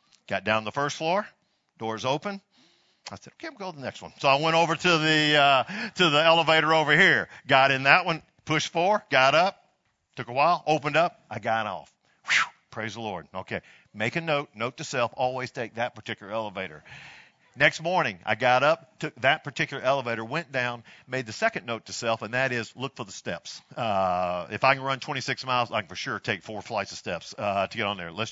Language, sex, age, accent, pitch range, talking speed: English, male, 50-69, American, 115-165 Hz, 230 wpm